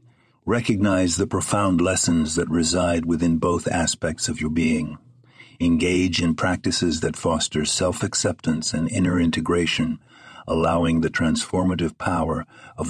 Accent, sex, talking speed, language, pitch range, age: American, male, 120 wpm, English, 85-110 Hz, 60-79